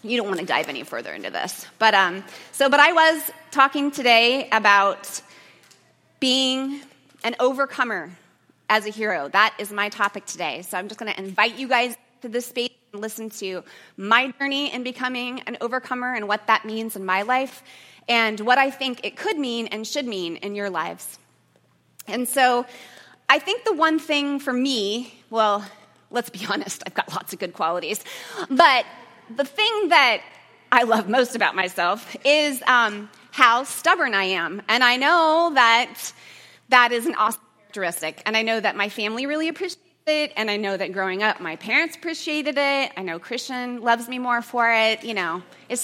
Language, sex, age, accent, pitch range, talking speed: English, female, 30-49, American, 210-275 Hz, 185 wpm